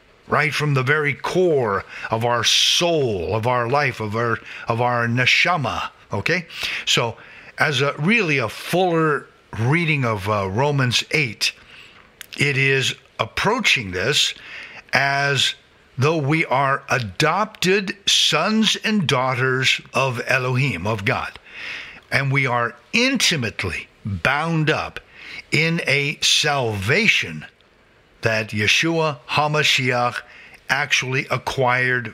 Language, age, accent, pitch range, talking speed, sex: English, 50-69, American, 120-150 Hz, 110 wpm, male